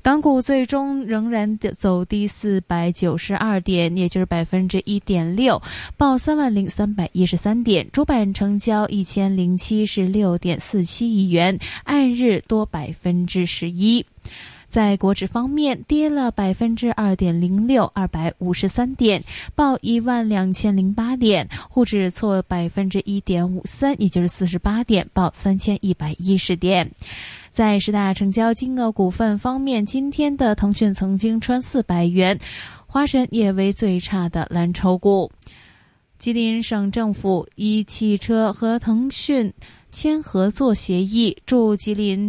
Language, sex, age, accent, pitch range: Chinese, female, 10-29, native, 185-230 Hz